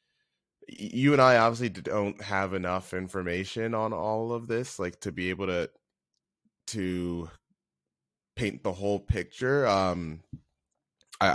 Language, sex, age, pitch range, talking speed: English, male, 20-39, 80-100 Hz, 125 wpm